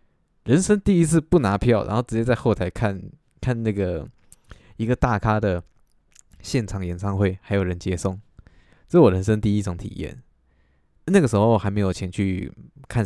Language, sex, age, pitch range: Chinese, male, 20-39, 95-115 Hz